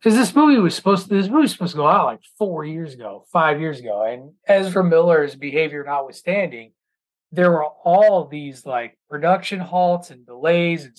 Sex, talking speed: male, 190 wpm